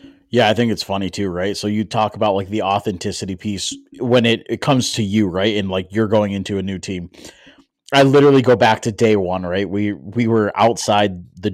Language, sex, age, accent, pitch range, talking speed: English, male, 30-49, American, 95-120 Hz, 225 wpm